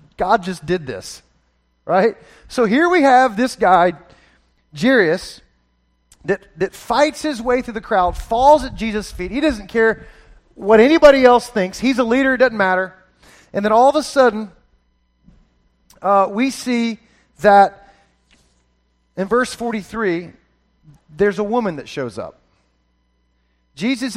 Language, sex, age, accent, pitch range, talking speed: English, male, 40-59, American, 175-235 Hz, 140 wpm